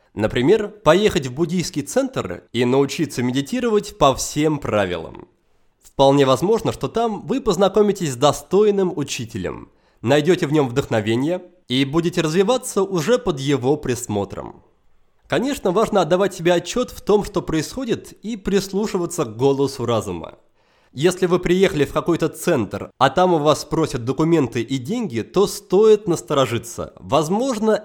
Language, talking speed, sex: Russian, 135 wpm, male